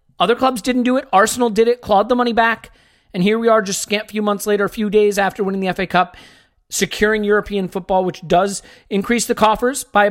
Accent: American